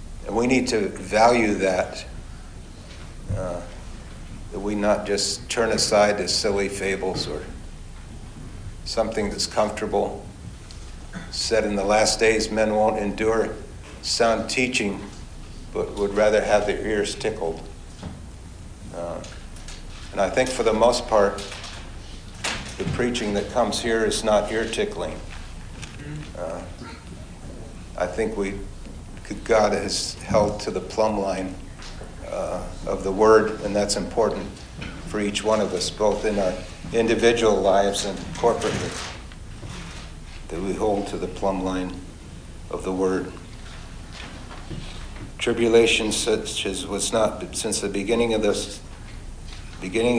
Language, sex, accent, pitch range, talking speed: English, male, American, 90-110 Hz, 120 wpm